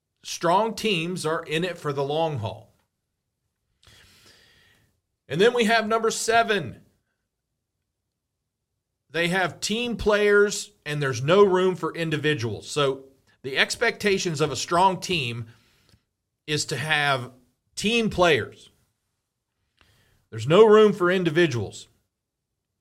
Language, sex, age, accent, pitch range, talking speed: English, male, 40-59, American, 125-185 Hz, 110 wpm